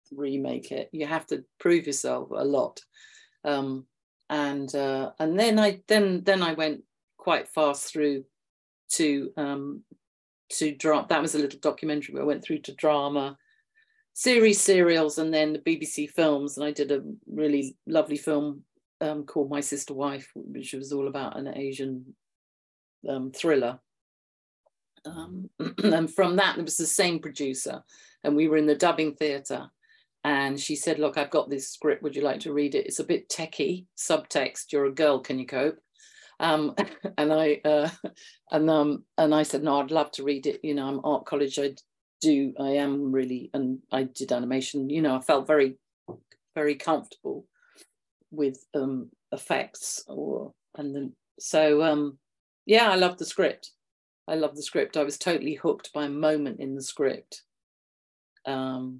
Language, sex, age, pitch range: English, female, 40-59, 140-160 Hz